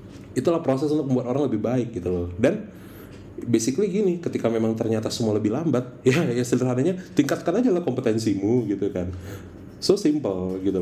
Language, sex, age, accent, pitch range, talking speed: Indonesian, male, 30-49, native, 100-130 Hz, 165 wpm